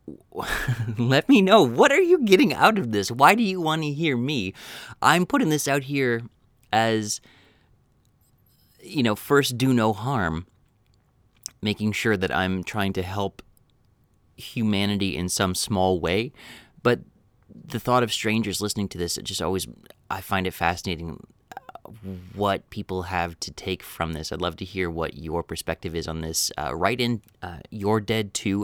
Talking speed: 170 wpm